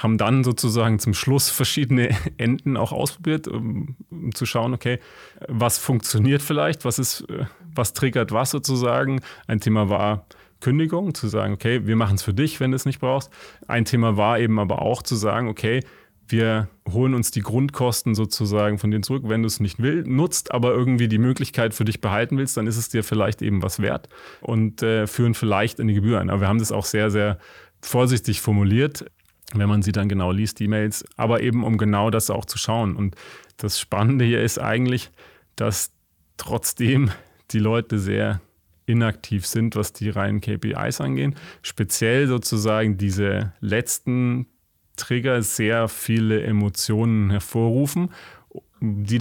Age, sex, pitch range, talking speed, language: 30-49, male, 105-125 Hz, 170 wpm, German